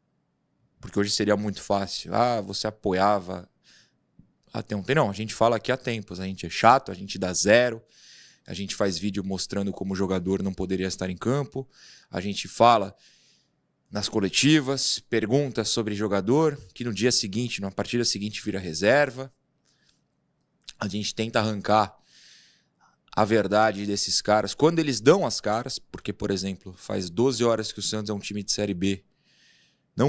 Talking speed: 165 wpm